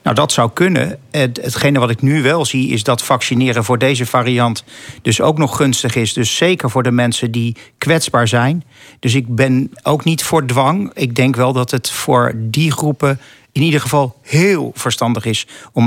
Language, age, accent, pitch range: Dutch, 50-69, Dutch, 120-140 Hz